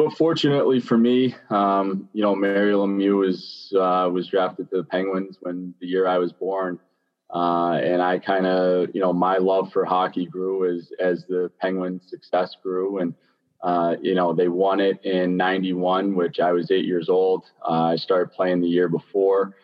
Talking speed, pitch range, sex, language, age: 190 wpm, 90-100 Hz, male, English, 20-39